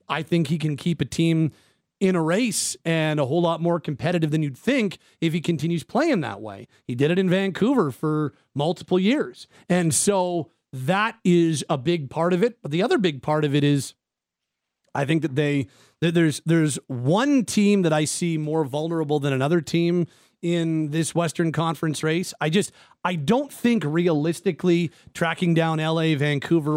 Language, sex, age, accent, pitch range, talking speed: English, male, 40-59, American, 155-190 Hz, 185 wpm